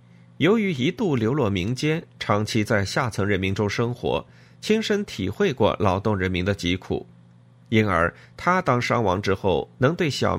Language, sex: Chinese, male